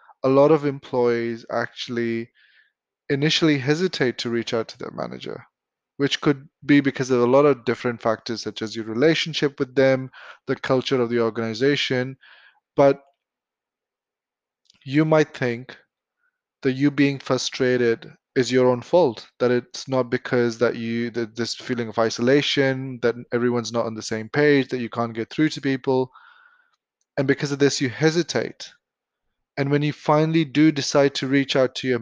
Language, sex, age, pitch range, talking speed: English, male, 20-39, 120-145 Hz, 165 wpm